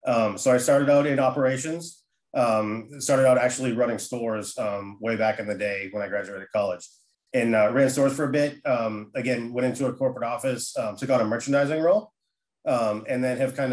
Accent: American